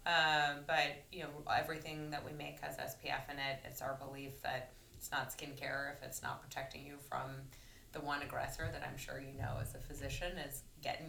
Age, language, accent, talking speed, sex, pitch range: 20-39, English, American, 205 wpm, female, 130-150 Hz